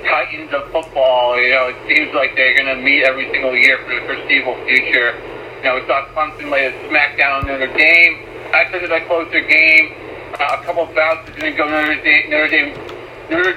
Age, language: 50-69, English